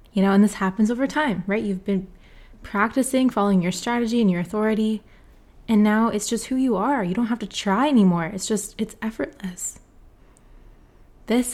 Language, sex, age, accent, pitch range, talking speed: English, female, 20-39, American, 190-230 Hz, 180 wpm